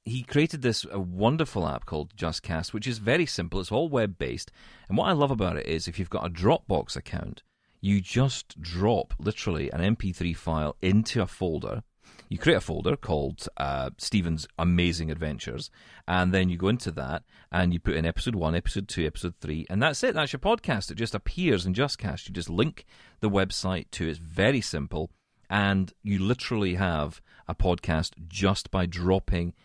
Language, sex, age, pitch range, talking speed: English, male, 40-59, 85-115 Hz, 185 wpm